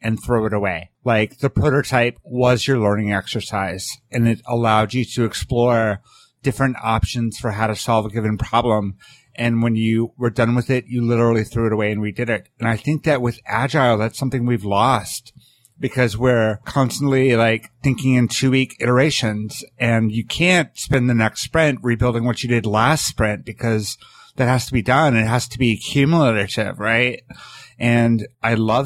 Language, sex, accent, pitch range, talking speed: English, male, American, 110-130 Hz, 185 wpm